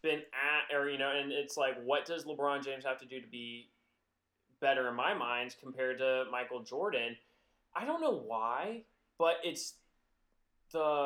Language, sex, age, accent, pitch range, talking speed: English, male, 20-39, American, 125-175 Hz, 175 wpm